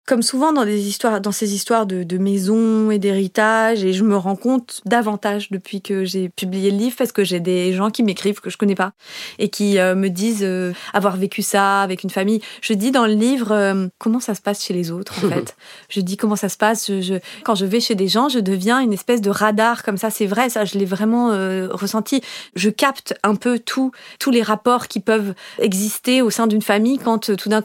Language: French